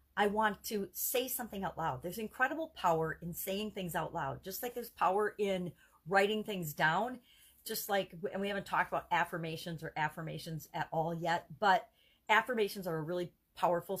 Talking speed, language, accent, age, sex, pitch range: 180 wpm, English, American, 40-59, female, 170-220 Hz